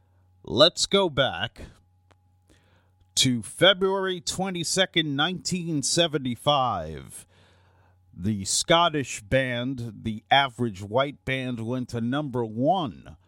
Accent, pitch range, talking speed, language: American, 95-135 Hz, 80 wpm, English